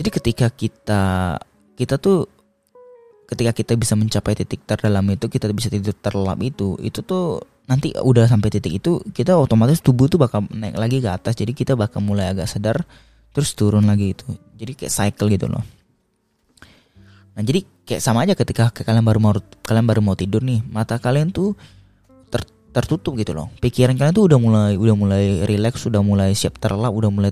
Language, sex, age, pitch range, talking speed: Indonesian, male, 20-39, 100-120 Hz, 180 wpm